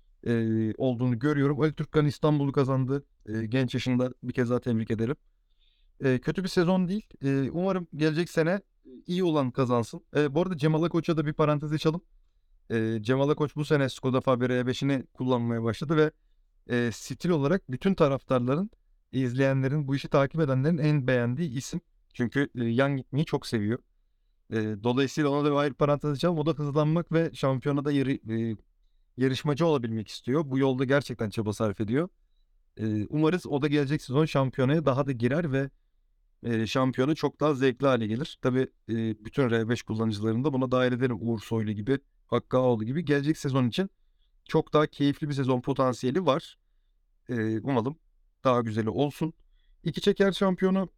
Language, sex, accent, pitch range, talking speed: Turkish, male, native, 120-155 Hz, 165 wpm